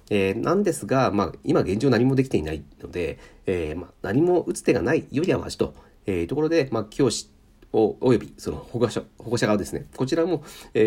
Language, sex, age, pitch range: Japanese, male, 40-59, 85-120 Hz